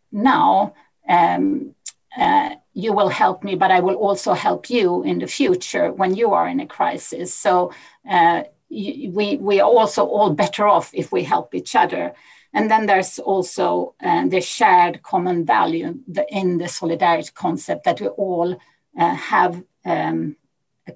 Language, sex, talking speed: English, female, 160 wpm